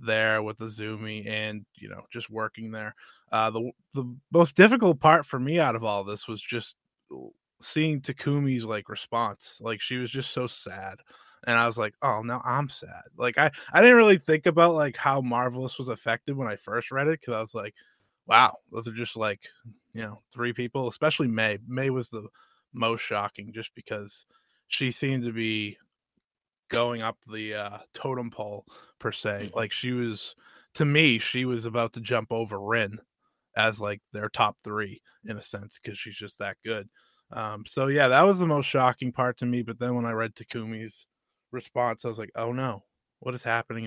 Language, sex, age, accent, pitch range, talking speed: English, male, 20-39, American, 110-130 Hz, 195 wpm